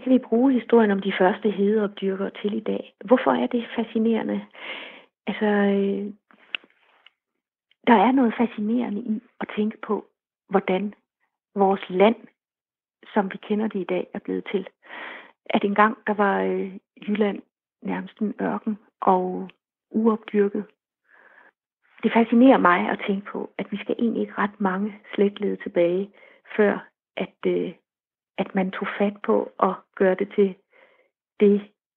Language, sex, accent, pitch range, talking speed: Danish, female, native, 195-230 Hz, 145 wpm